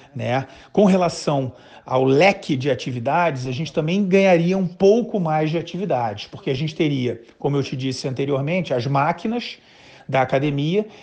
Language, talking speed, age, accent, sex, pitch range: Portuguese, 160 wpm, 40-59, Brazilian, male, 130-165 Hz